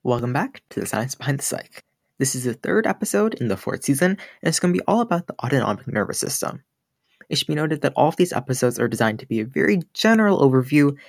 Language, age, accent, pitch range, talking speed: English, 20-39, American, 120-155 Hz, 245 wpm